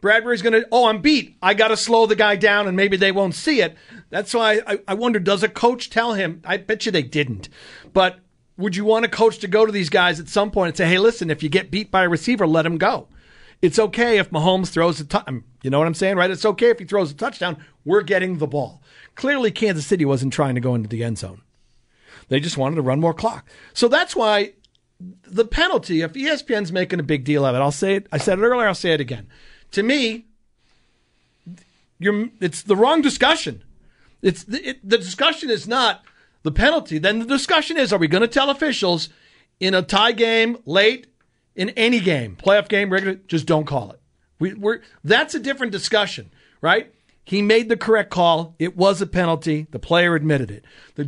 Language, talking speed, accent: English, 220 wpm, American